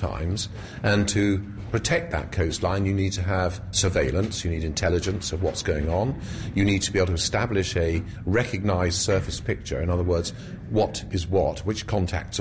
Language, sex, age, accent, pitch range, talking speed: English, male, 40-59, British, 90-110 Hz, 180 wpm